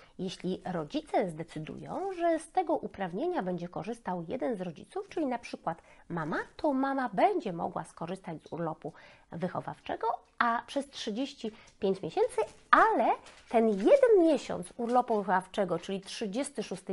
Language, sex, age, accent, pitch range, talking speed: Polish, female, 30-49, native, 185-275 Hz, 130 wpm